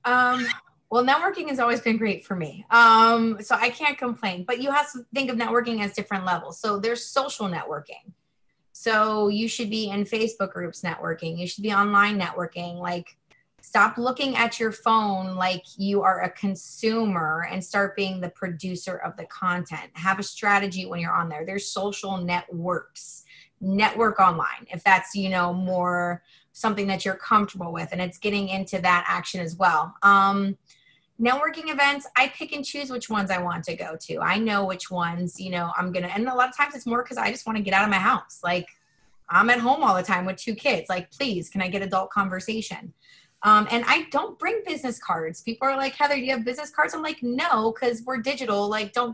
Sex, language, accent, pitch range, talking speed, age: female, English, American, 185-240 Hz, 210 wpm, 20-39